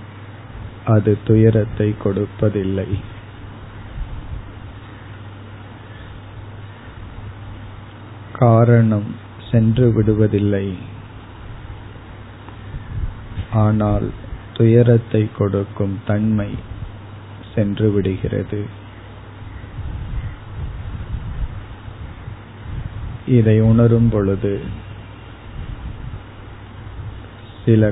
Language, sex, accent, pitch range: Tamil, male, native, 100-110 Hz